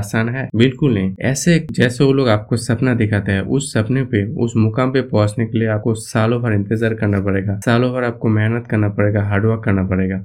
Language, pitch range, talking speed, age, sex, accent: Hindi, 110-130 Hz, 210 wpm, 20-39, male, native